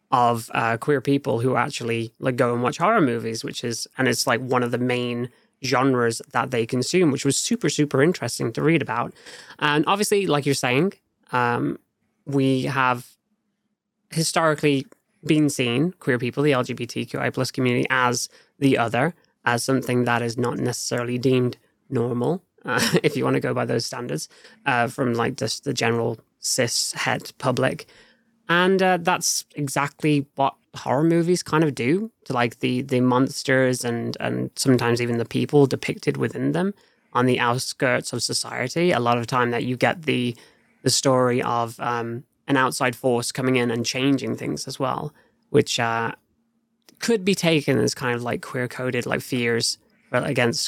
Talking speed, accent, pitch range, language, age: 170 wpm, British, 120-150 Hz, English, 20-39